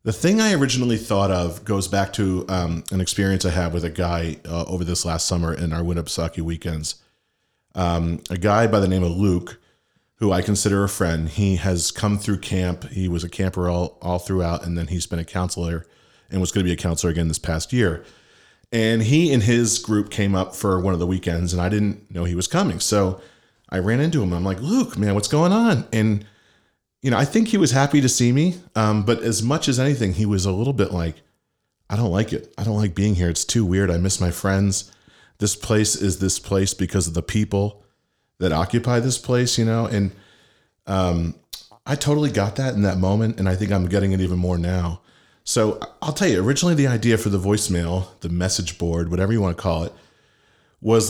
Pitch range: 90-110 Hz